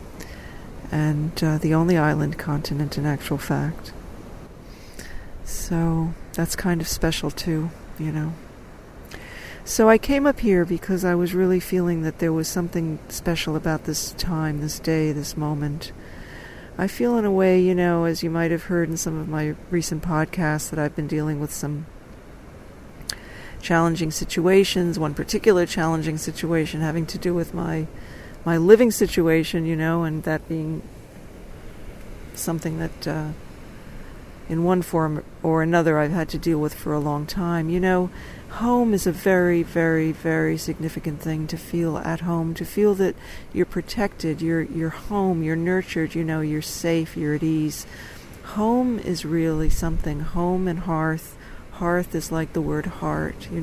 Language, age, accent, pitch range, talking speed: English, 40-59, American, 155-175 Hz, 160 wpm